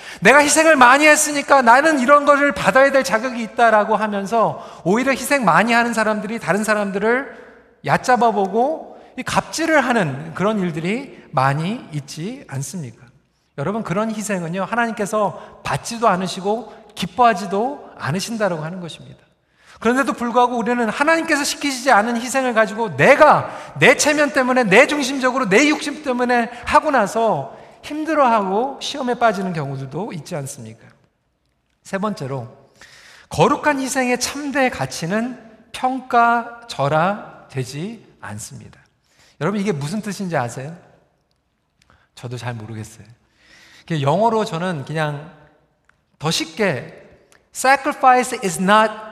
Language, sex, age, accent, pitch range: Korean, male, 40-59, native, 165-255 Hz